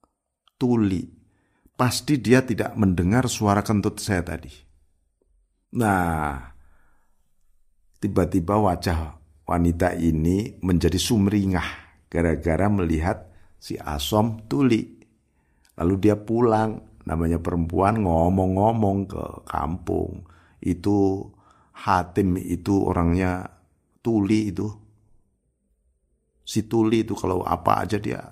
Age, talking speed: 50-69, 90 wpm